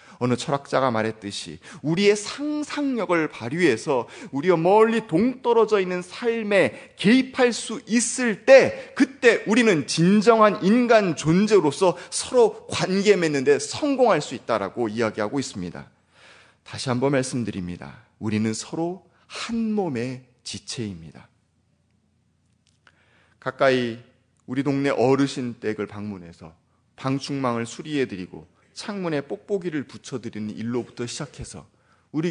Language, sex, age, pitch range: Korean, male, 30-49, 120-200 Hz